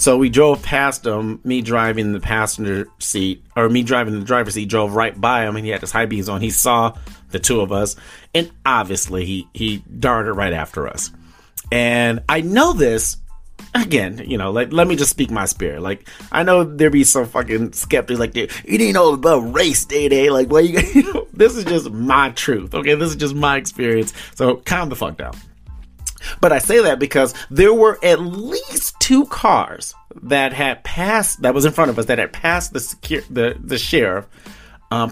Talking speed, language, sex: 205 wpm, English, male